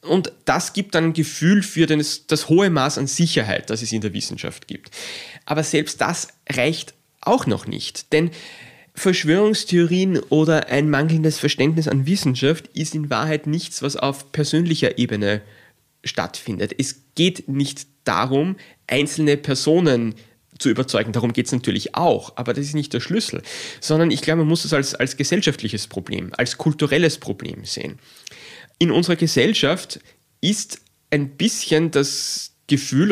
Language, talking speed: German, 150 wpm